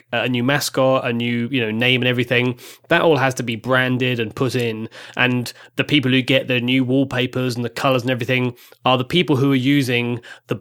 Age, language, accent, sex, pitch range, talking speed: 20-39, English, British, male, 115-135 Hz, 220 wpm